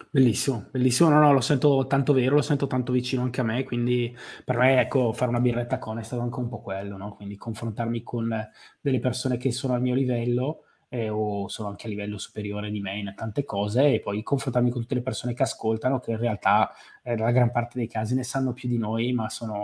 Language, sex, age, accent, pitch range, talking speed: Italian, male, 20-39, native, 115-130 Hz, 235 wpm